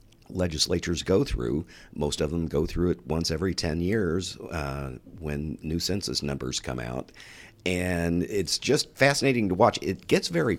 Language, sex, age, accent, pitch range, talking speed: English, male, 50-69, American, 75-100 Hz, 165 wpm